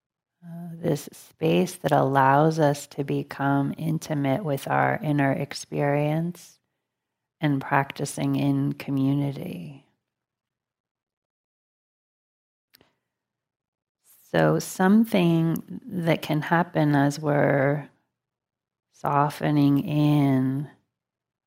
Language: English